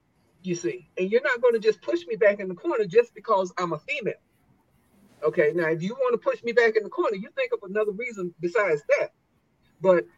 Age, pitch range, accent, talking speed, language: 50-69, 175-245 Hz, American, 230 wpm, English